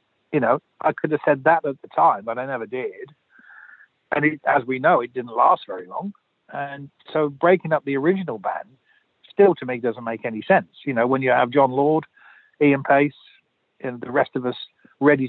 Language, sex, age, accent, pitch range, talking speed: English, male, 50-69, British, 125-150 Hz, 205 wpm